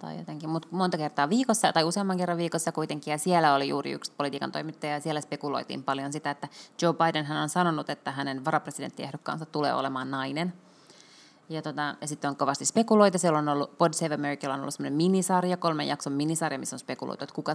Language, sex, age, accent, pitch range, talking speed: Finnish, female, 20-39, native, 140-165 Hz, 190 wpm